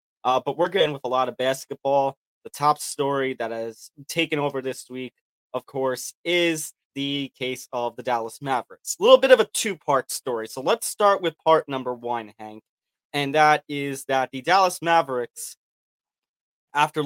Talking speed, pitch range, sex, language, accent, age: 175 wpm, 125-155 Hz, male, English, American, 20-39